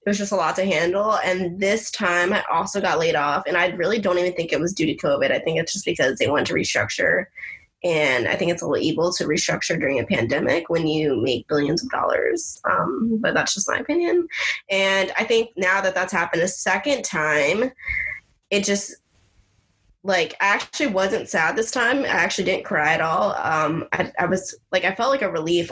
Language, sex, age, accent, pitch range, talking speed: English, female, 10-29, American, 170-200 Hz, 220 wpm